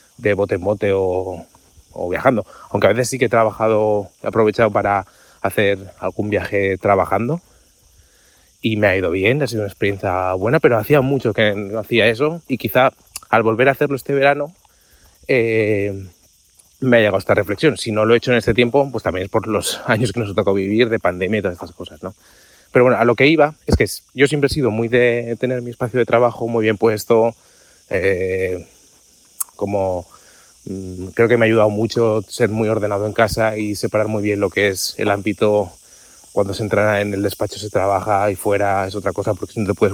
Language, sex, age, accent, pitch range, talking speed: English, male, 30-49, Spanish, 100-125 Hz, 210 wpm